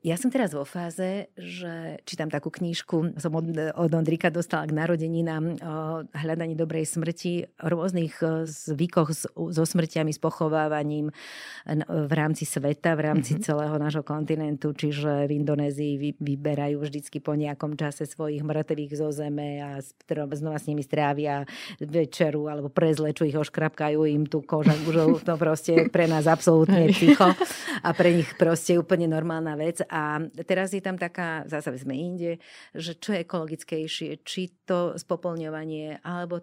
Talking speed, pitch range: 150 wpm, 150-170 Hz